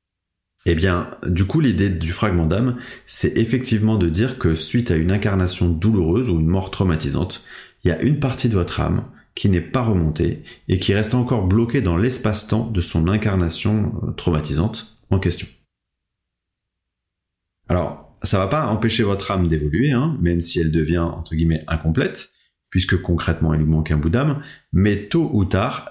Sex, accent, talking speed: male, French, 170 wpm